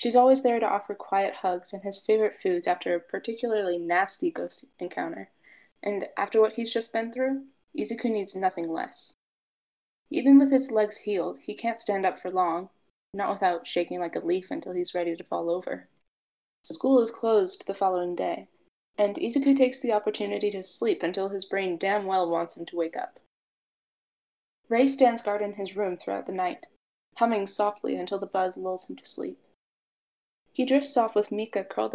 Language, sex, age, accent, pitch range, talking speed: English, female, 10-29, American, 190-240 Hz, 185 wpm